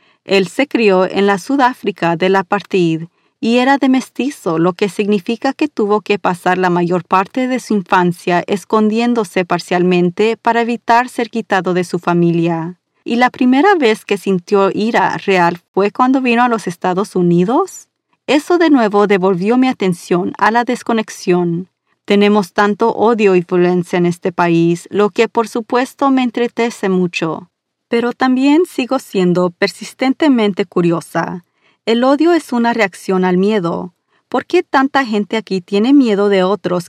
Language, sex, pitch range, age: Spanish, female, 185-240 Hz, 40-59